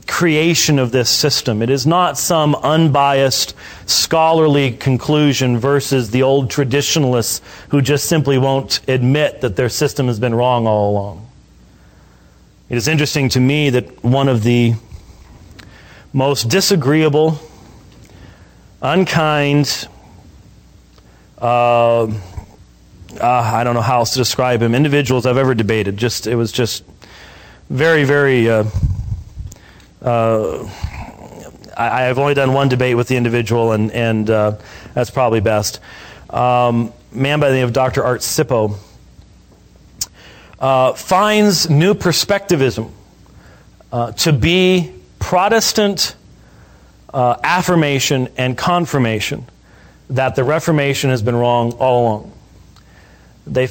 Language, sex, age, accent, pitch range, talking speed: English, male, 40-59, American, 115-145 Hz, 120 wpm